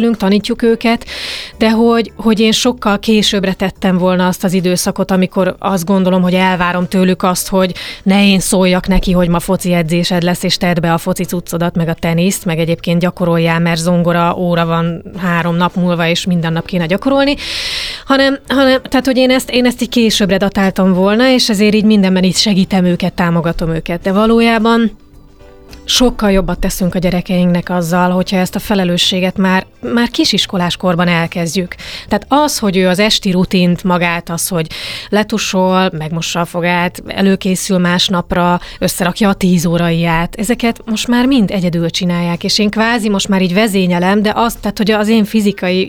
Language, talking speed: Hungarian, 170 wpm